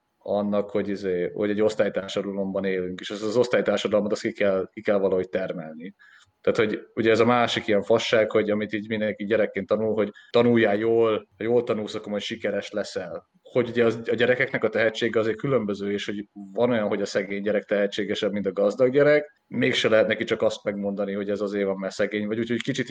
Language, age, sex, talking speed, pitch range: Hungarian, 30-49, male, 205 wpm, 100-120 Hz